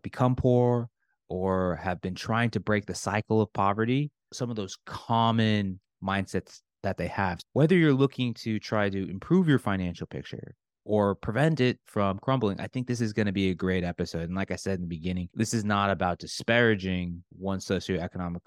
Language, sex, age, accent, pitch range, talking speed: English, male, 30-49, American, 90-110 Hz, 190 wpm